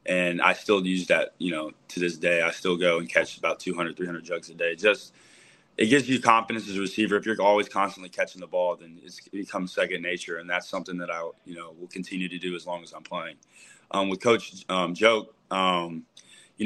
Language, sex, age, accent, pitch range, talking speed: English, male, 20-39, American, 90-105 Hz, 235 wpm